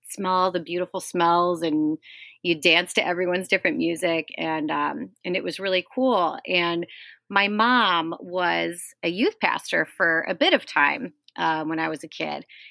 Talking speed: 170 wpm